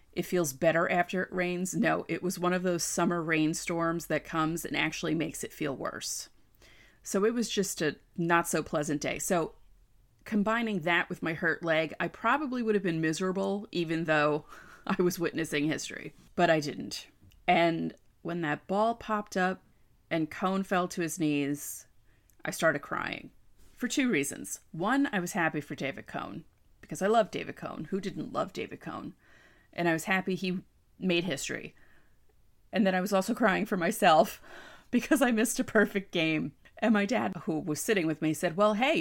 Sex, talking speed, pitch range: female, 185 wpm, 160-190 Hz